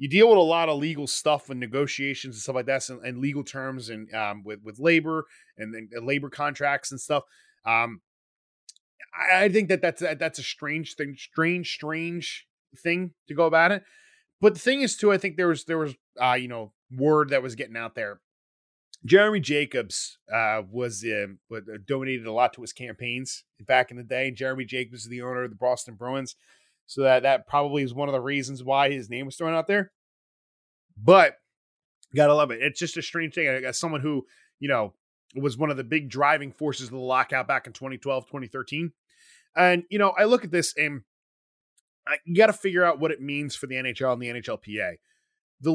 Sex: male